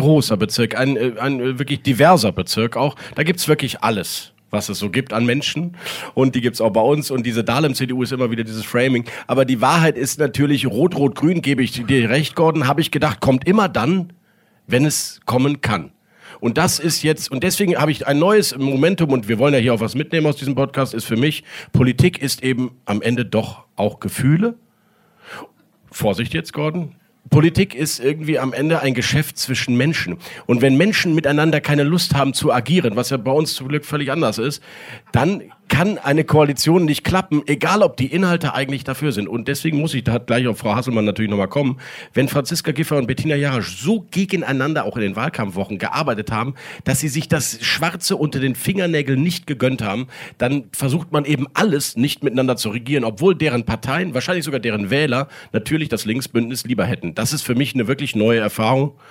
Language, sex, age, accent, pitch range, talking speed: German, male, 40-59, German, 125-155 Hz, 200 wpm